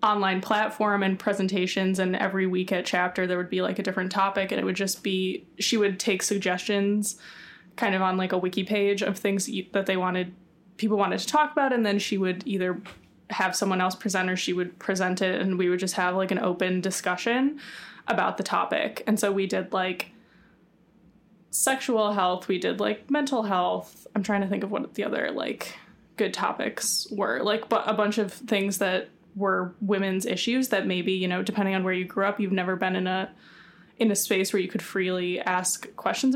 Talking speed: 210 wpm